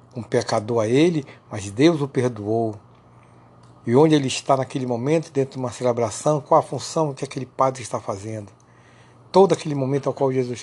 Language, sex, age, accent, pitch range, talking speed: Portuguese, male, 60-79, Brazilian, 120-150 Hz, 180 wpm